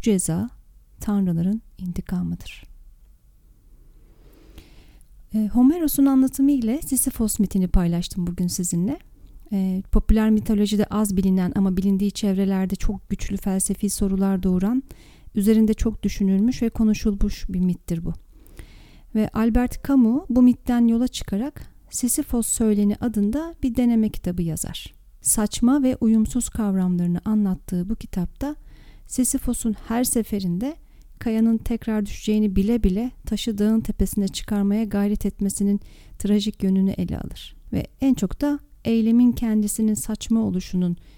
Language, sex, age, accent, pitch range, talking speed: Turkish, female, 40-59, native, 195-235 Hz, 115 wpm